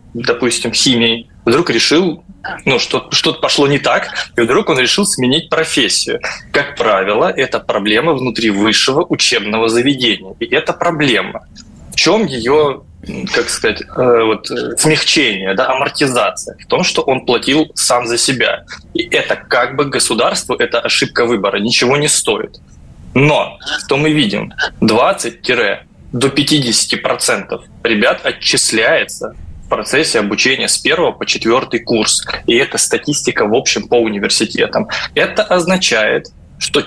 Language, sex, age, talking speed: Russian, male, 20-39, 130 wpm